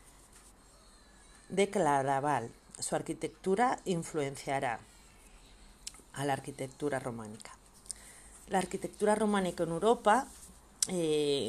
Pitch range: 140-185 Hz